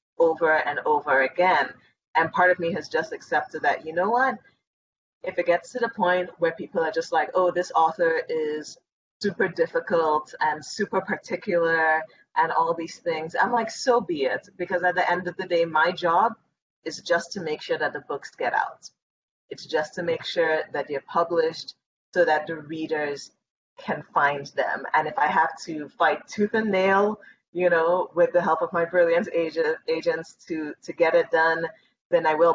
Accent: American